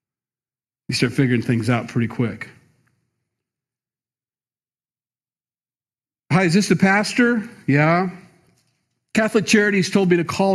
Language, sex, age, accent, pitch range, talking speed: English, male, 40-59, American, 130-170 Hz, 110 wpm